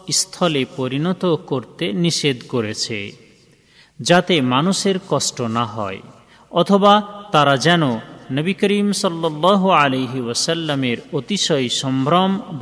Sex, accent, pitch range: male, native, 130-185 Hz